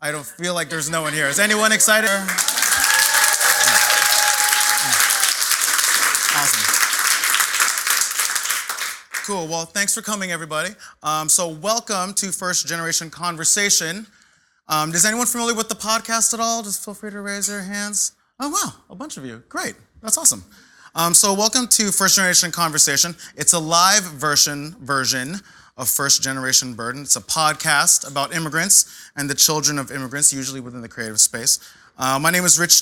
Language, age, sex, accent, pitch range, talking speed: English, 20-39, male, American, 135-190 Hz, 155 wpm